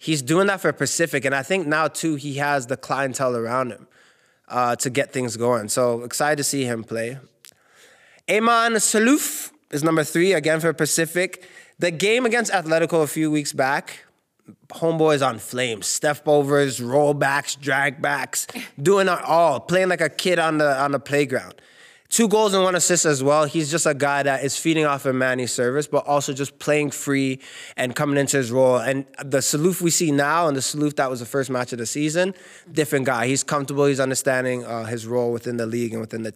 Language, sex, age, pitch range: English, male, 20-39, 130-165 Hz